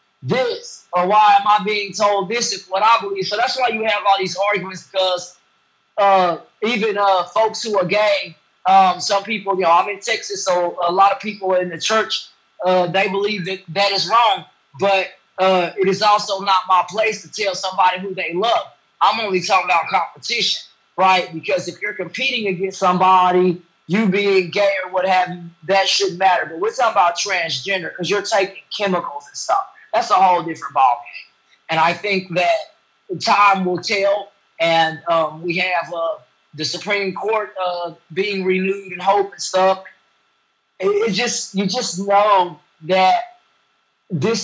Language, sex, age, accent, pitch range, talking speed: English, male, 20-39, American, 180-205 Hz, 180 wpm